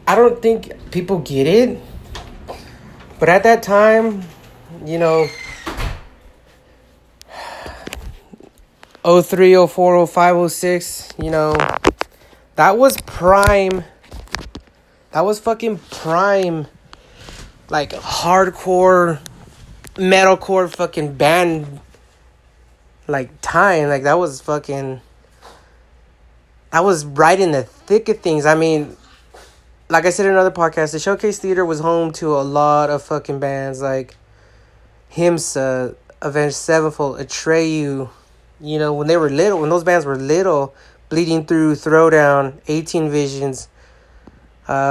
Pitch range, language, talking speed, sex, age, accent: 140-175 Hz, English, 110 wpm, male, 30-49, American